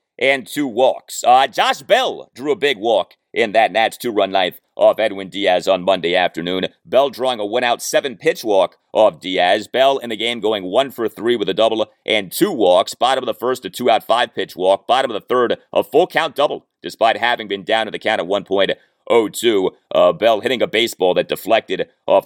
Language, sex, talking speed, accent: English, male, 200 wpm, American